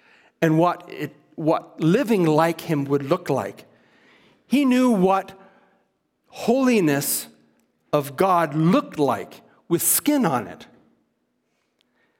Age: 50-69